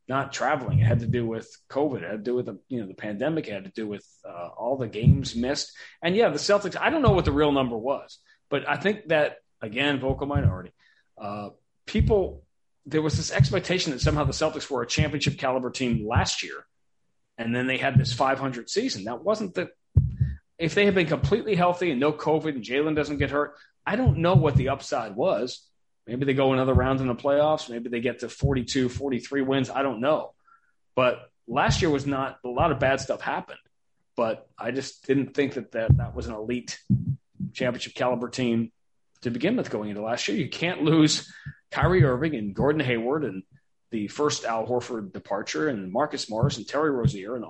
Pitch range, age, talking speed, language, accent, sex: 125-150 Hz, 30-49, 210 wpm, English, American, male